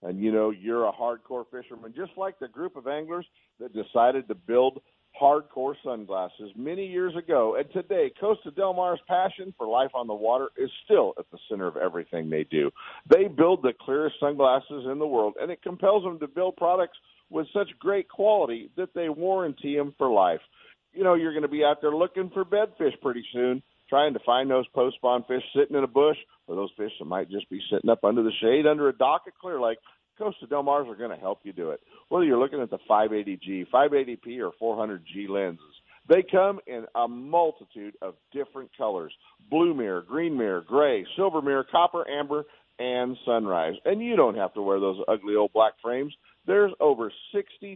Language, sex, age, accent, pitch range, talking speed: English, male, 50-69, American, 115-185 Hz, 200 wpm